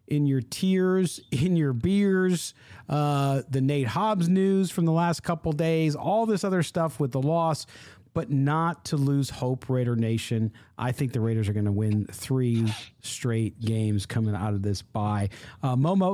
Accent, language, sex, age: American, English, male, 40-59